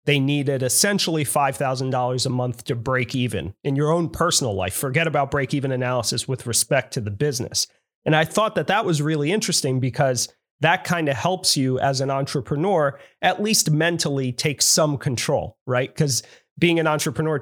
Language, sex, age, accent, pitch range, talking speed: English, male, 30-49, American, 130-155 Hz, 185 wpm